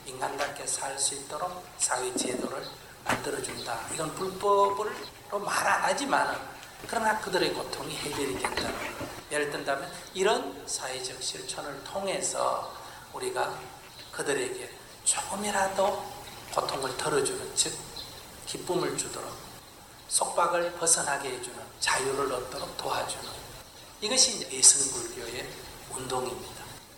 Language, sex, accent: Korean, male, native